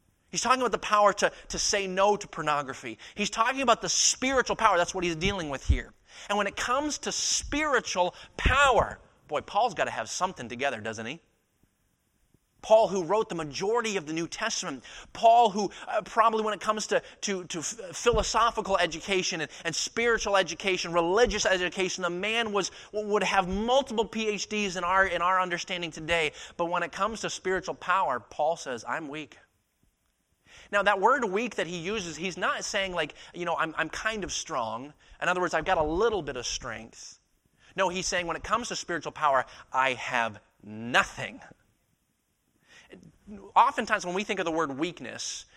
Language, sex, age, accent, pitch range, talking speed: English, male, 30-49, American, 160-210 Hz, 180 wpm